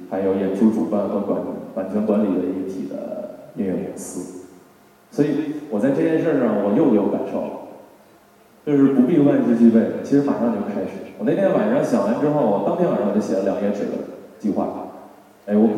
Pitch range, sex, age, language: 95-140 Hz, male, 20-39, Chinese